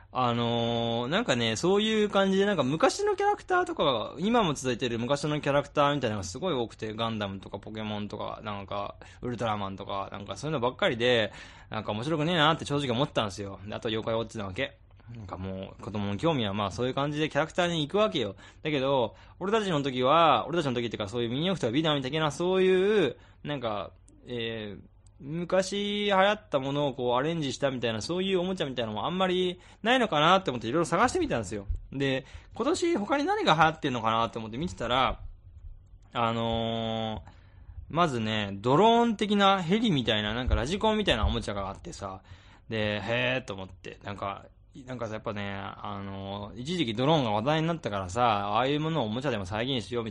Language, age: Japanese, 20-39